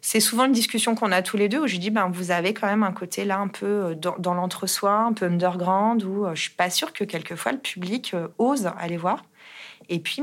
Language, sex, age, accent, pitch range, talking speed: French, female, 30-49, French, 180-220 Hz, 260 wpm